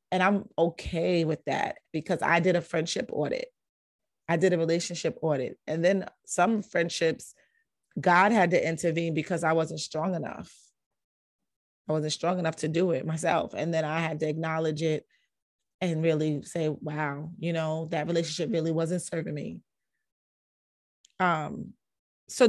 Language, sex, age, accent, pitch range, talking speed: English, female, 30-49, American, 155-180 Hz, 155 wpm